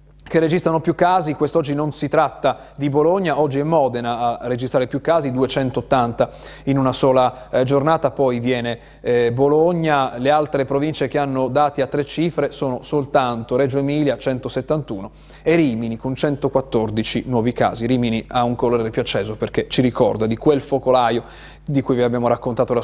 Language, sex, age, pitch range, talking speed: Italian, male, 30-49, 125-150 Hz, 165 wpm